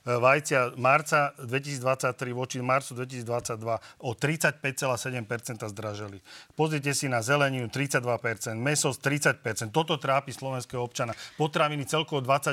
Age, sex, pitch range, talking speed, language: 40-59, male, 125-140 Hz, 100 wpm, Slovak